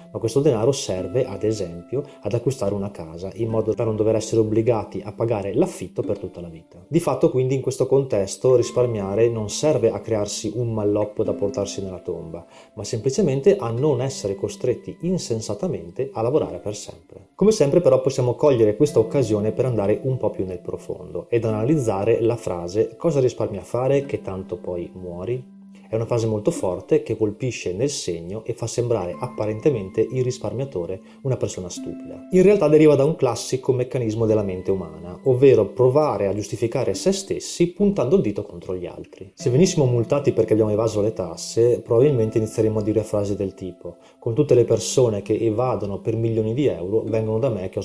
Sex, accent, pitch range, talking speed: male, native, 105-135 Hz, 185 wpm